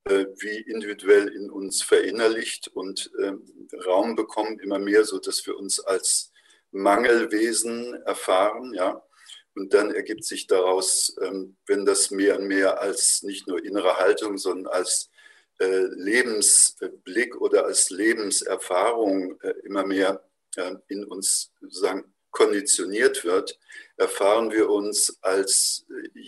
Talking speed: 130 wpm